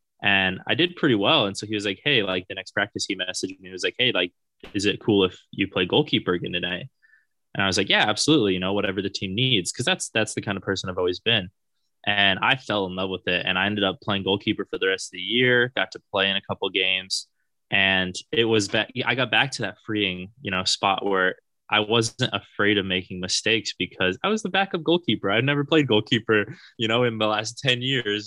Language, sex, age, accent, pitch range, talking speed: English, male, 20-39, American, 95-120 Hz, 250 wpm